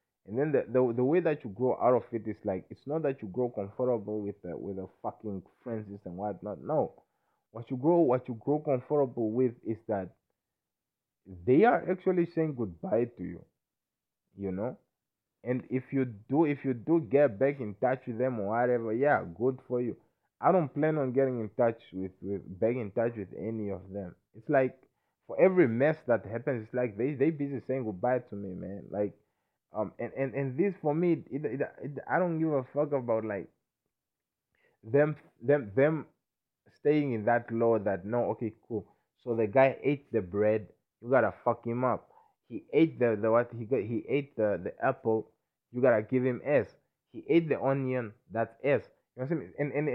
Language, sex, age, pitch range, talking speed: English, male, 20-39, 110-140 Hz, 200 wpm